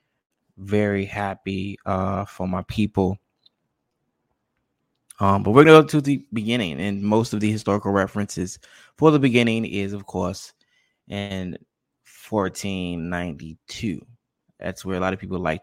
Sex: male